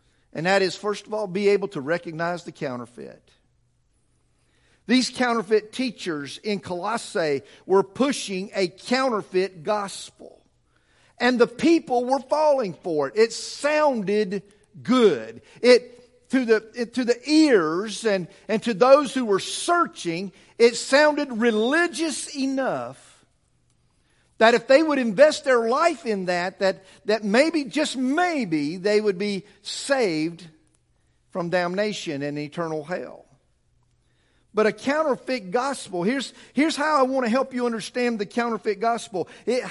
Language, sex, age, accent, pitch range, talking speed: English, male, 50-69, American, 190-255 Hz, 135 wpm